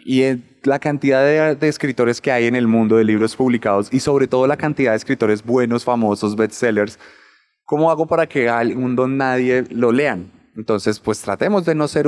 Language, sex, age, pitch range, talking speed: Spanish, male, 20-39, 105-130 Hz, 200 wpm